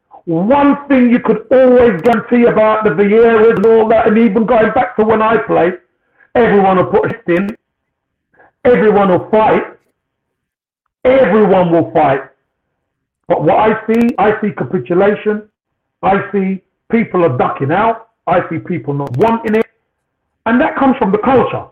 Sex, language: male, English